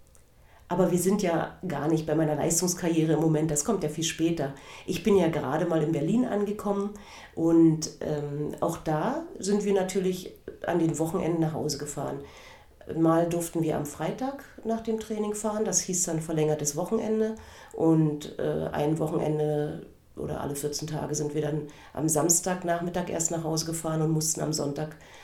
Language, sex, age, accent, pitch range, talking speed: German, female, 40-59, German, 150-180 Hz, 170 wpm